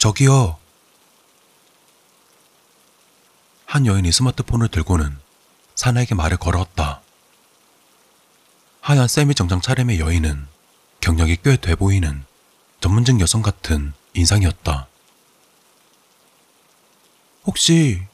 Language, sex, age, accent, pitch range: Korean, male, 40-59, native, 80-115 Hz